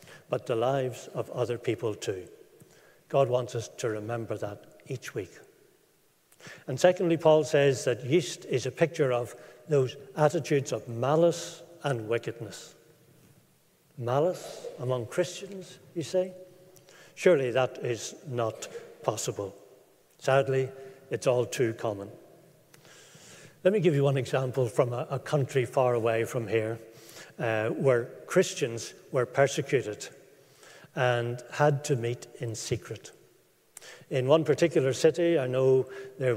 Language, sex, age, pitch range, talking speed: English, male, 60-79, 125-160 Hz, 125 wpm